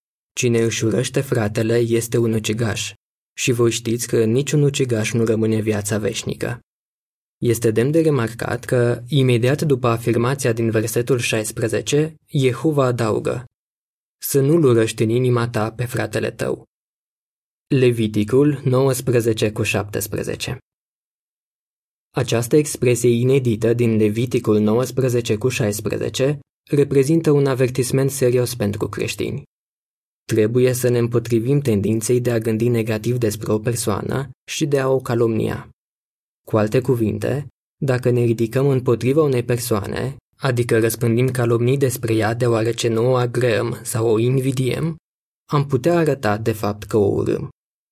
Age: 20-39